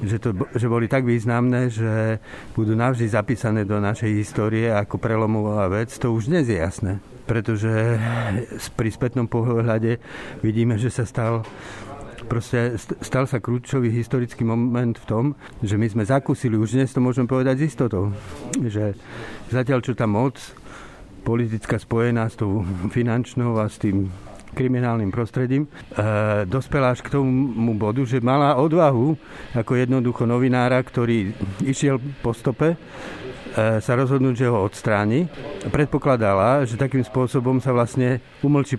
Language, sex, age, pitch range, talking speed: Slovak, male, 50-69, 110-130 Hz, 140 wpm